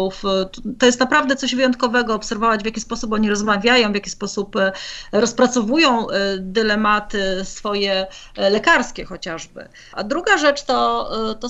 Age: 30-49